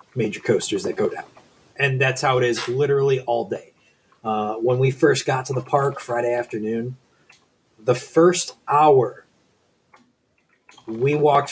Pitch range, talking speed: 115-140 Hz, 145 wpm